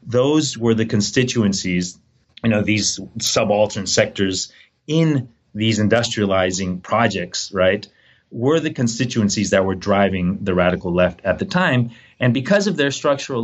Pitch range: 100-125 Hz